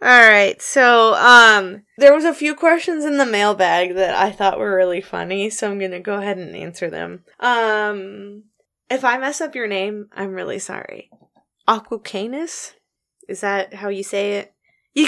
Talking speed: 180 wpm